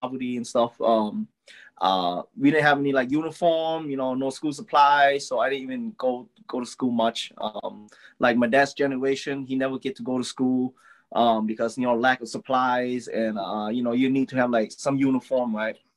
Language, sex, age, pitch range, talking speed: English, male, 20-39, 115-150 Hz, 210 wpm